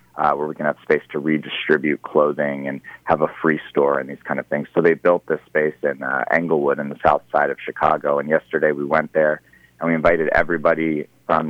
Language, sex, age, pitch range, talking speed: English, male, 30-49, 75-90 Hz, 225 wpm